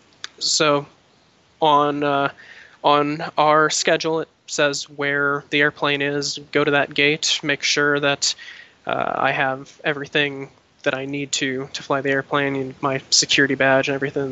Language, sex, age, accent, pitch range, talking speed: English, male, 20-39, American, 135-150 Hz, 155 wpm